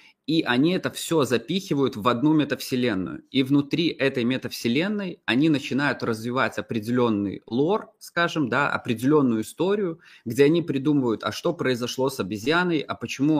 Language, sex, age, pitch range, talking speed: Russian, male, 20-39, 115-150 Hz, 140 wpm